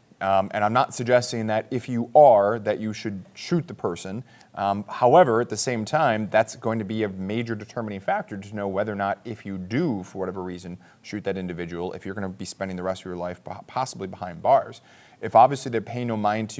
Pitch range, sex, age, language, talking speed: 100-120 Hz, male, 30-49, English, 230 wpm